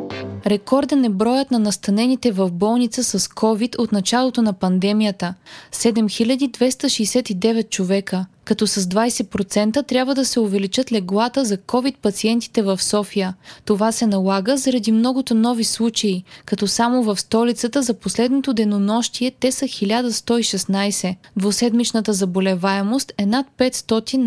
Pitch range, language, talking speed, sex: 200-240 Hz, Bulgarian, 120 wpm, female